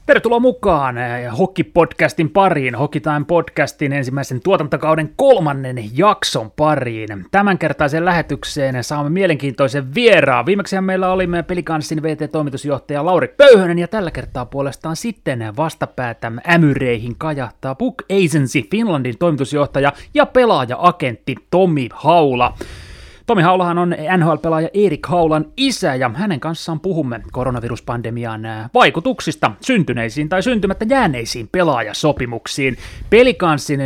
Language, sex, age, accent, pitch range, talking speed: Finnish, male, 30-49, native, 135-180 Hz, 105 wpm